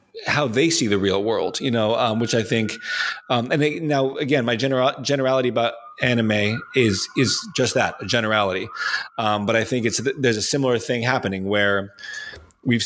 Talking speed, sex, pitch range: 185 wpm, male, 105-135 Hz